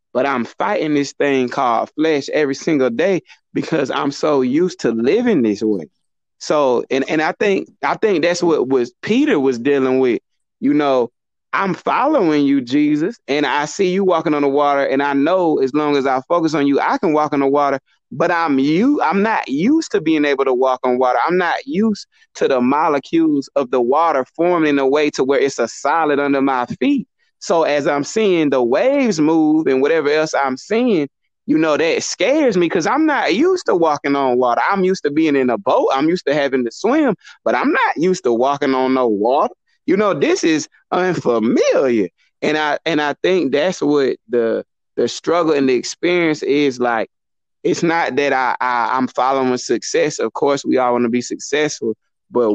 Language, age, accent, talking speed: English, 30-49, American, 205 wpm